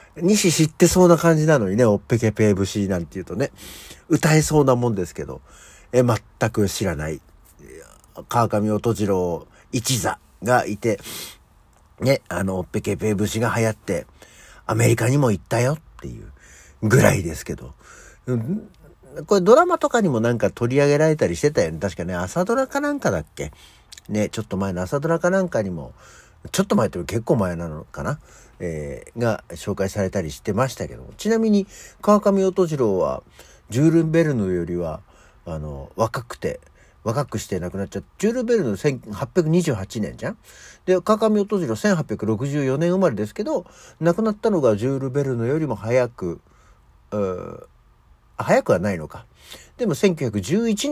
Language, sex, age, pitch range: Japanese, male, 50-69, 95-160 Hz